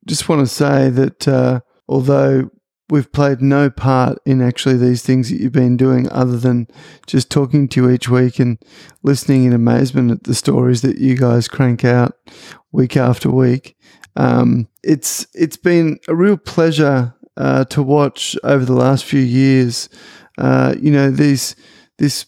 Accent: Australian